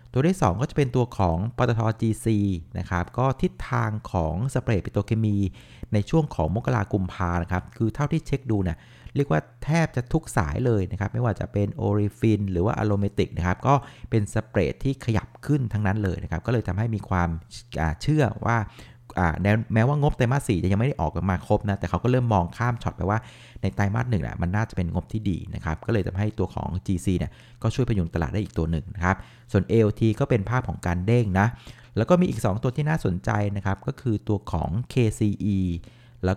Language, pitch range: Thai, 95-120 Hz